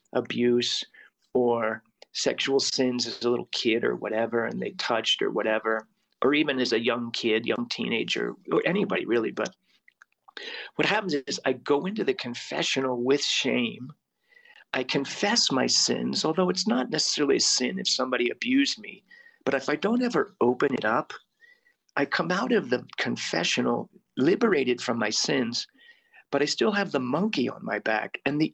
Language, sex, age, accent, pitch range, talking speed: English, male, 40-59, American, 125-180 Hz, 170 wpm